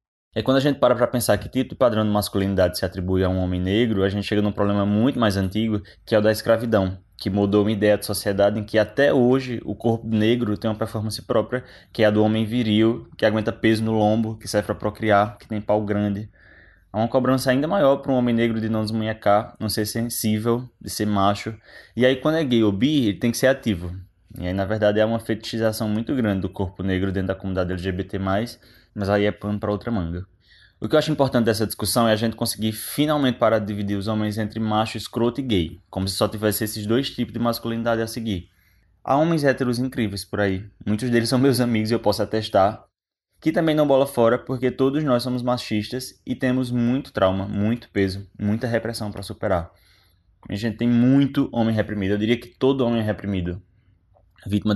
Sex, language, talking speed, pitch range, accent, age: male, Portuguese, 225 wpm, 100-120 Hz, Brazilian, 20-39